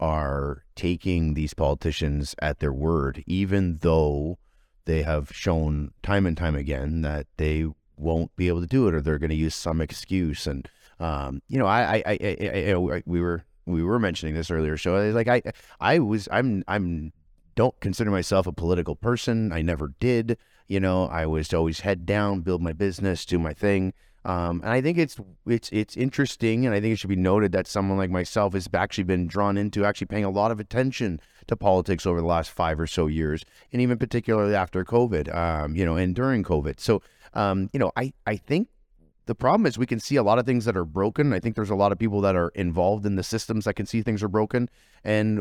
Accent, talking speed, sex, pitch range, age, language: American, 220 wpm, male, 85-110 Hz, 30-49, English